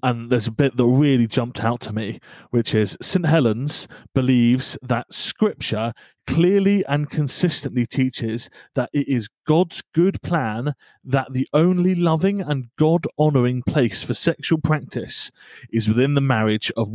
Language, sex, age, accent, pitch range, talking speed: English, male, 30-49, British, 125-170 Hz, 150 wpm